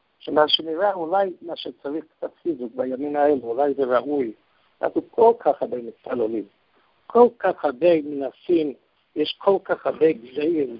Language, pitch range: English, 130-165 Hz